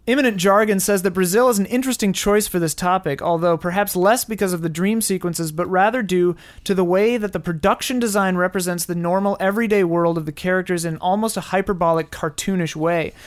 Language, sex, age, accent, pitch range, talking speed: English, male, 30-49, American, 170-210 Hz, 200 wpm